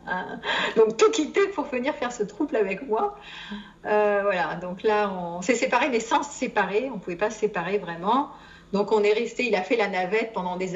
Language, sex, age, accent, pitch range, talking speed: French, female, 50-69, French, 195-270 Hz, 215 wpm